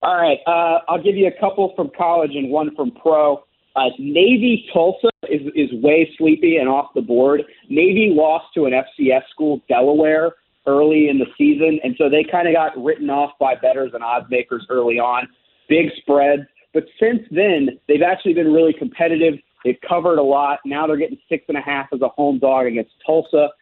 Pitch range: 140-170 Hz